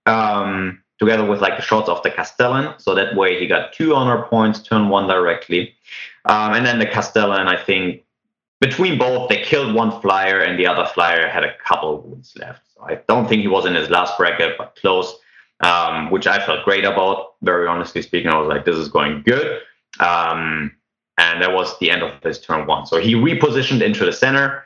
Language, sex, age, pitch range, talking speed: English, male, 30-49, 90-115 Hz, 210 wpm